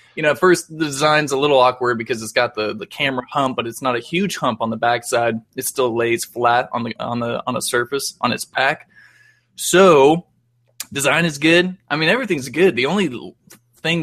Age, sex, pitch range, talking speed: 20-39, male, 115-135 Hz, 215 wpm